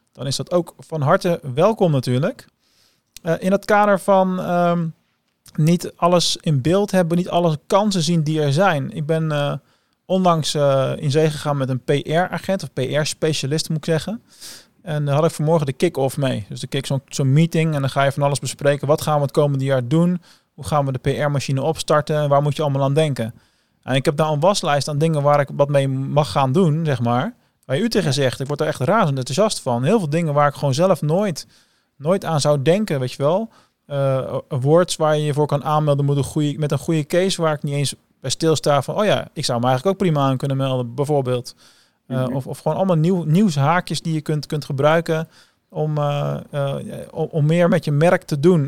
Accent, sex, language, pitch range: Dutch, male, Dutch, 140-170 Hz